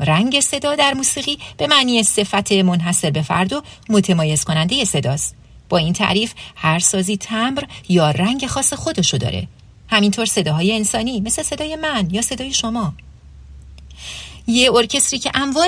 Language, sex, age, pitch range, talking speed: English, female, 40-59, 155-240 Hz, 145 wpm